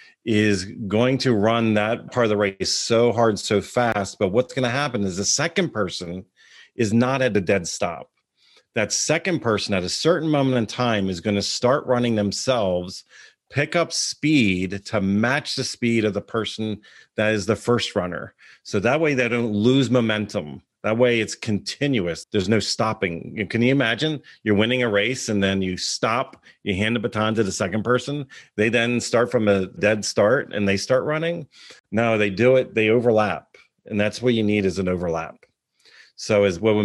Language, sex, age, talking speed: English, male, 40-59, 190 wpm